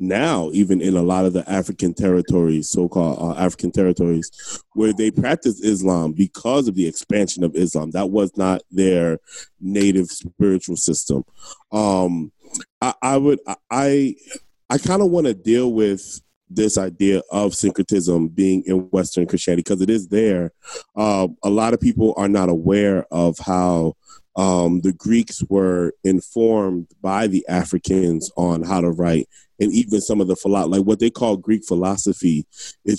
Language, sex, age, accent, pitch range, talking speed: English, male, 20-39, American, 90-105 Hz, 160 wpm